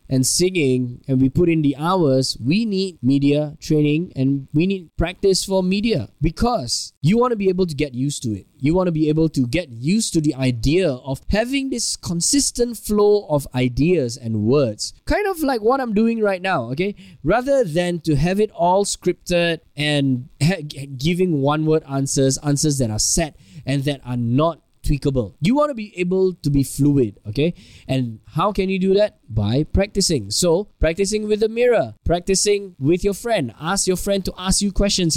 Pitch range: 135-195 Hz